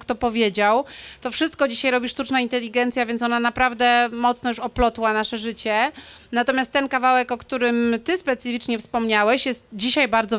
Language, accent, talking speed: Polish, native, 155 wpm